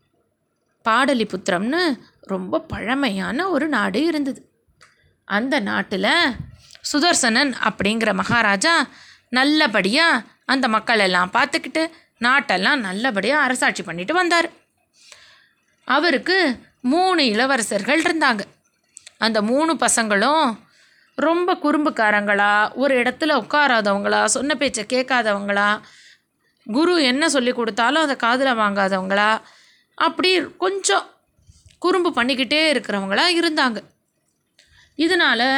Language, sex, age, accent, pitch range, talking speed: Tamil, female, 20-39, native, 225-310 Hz, 85 wpm